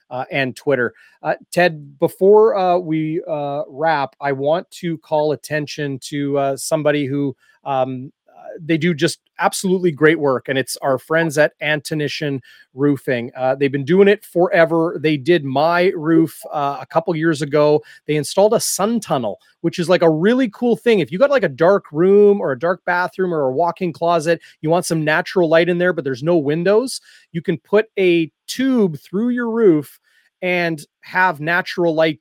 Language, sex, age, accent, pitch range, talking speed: English, male, 30-49, American, 145-180 Hz, 185 wpm